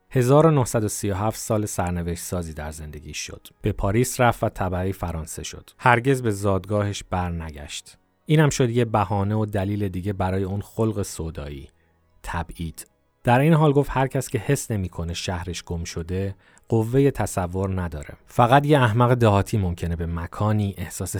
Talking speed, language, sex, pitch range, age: 155 wpm, Persian, male, 85-105 Hz, 30-49